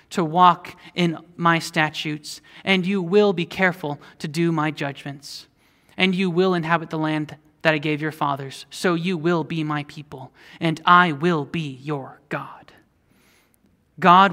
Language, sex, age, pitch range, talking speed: English, male, 30-49, 155-195 Hz, 160 wpm